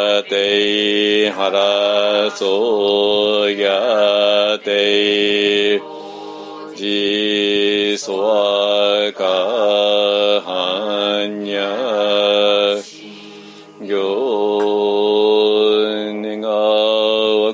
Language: Japanese